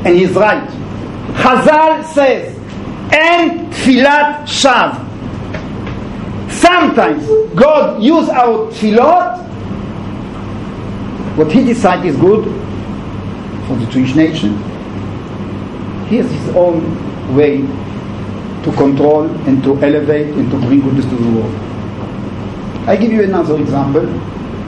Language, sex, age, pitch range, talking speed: English, male, 50-69, 135-195 Hz, 105 wpm